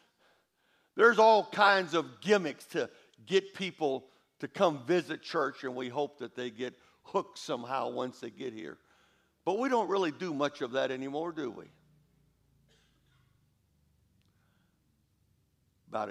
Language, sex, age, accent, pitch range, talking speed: English, male, 60-79, American, 105-140 Hz, 135 wpm